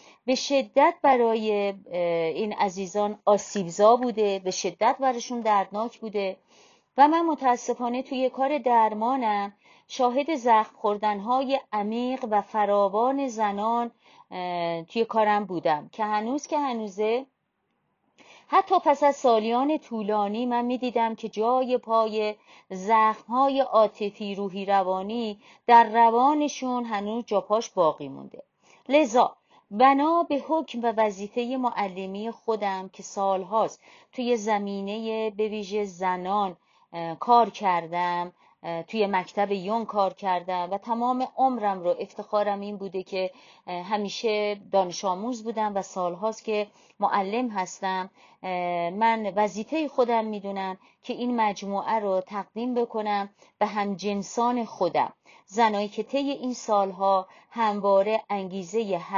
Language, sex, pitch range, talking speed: Persian, female, 195-240 Hz, 115 wpm